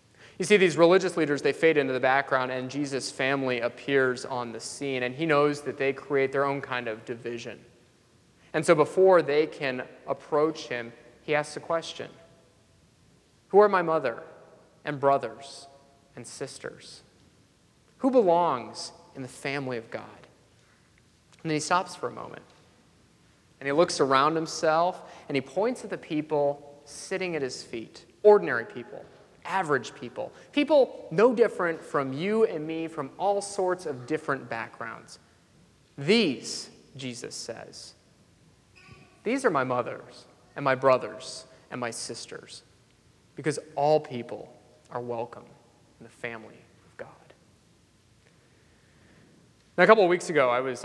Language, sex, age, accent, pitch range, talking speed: English, male, 30-49, American, 125-165 Hz, 145 wpm